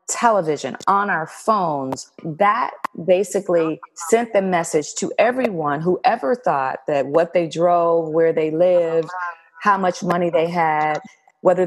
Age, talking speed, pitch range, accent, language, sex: 40-59, 140 wpm, 155-205 Hz, American, English, female